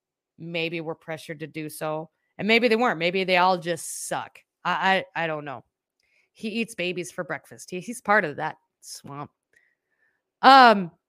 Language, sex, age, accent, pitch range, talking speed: English, female, 30-49, American, 155-205 Hz, 175 wpm